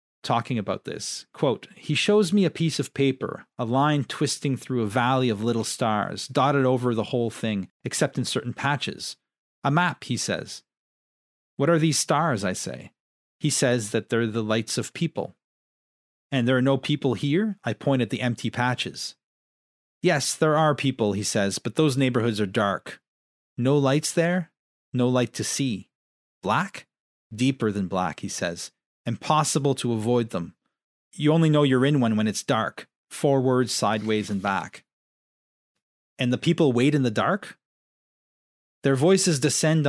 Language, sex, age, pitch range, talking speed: English, male, 30-49, 110-145 Hz, 165 wpm